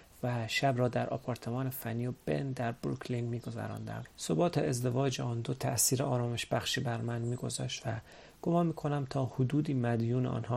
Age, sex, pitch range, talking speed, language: 40-59, male, 115-135 Hz, 160 wpm, Persian